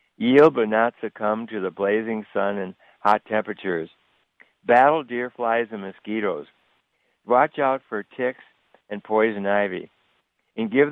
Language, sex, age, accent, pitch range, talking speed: English, male, 60-79, American, 100-120 Hz, 135 wpm